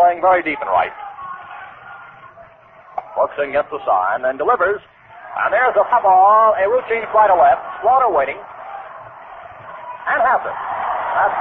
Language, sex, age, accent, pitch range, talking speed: English, male, 50-69, American, 220-350 Hz, 140 wpm